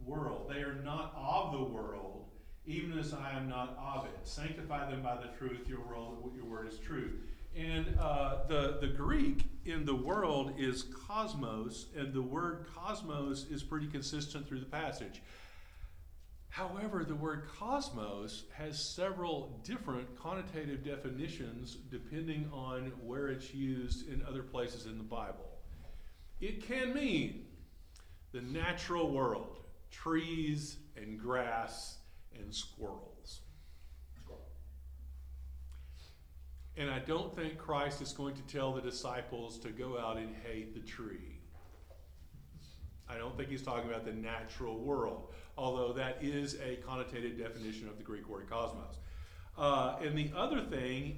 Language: English